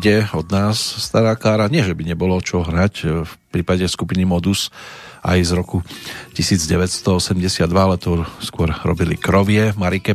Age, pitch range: 40-59, 90-105 Hz